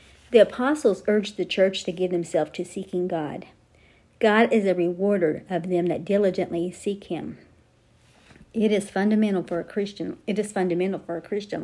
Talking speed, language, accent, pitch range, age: 170 wpm, English, American, 160-205 Hz, 50-69